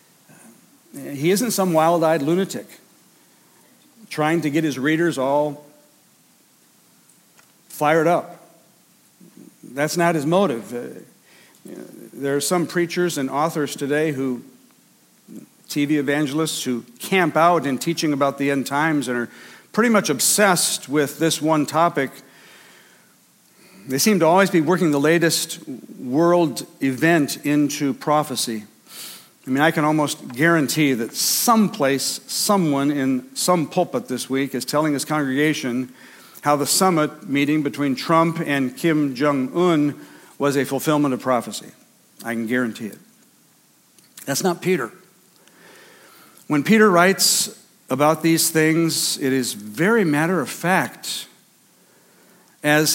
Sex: male